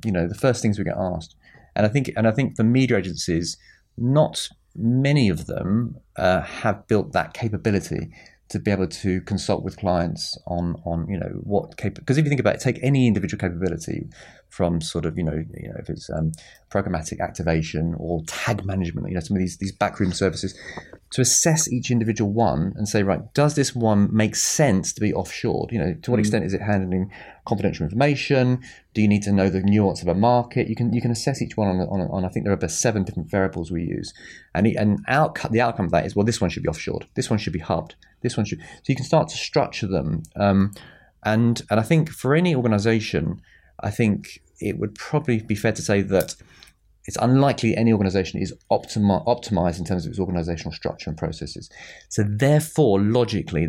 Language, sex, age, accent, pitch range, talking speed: English, male, 30-49, British, 90-120 Hz, 215 wpm